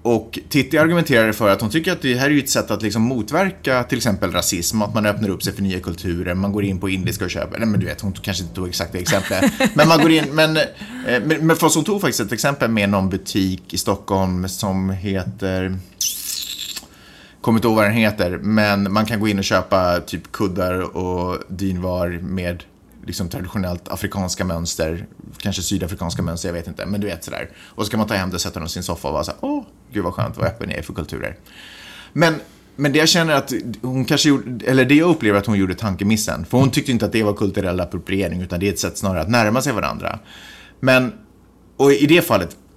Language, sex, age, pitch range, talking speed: Swedish, male, 30-49, 95-120 Hz, 225 wpm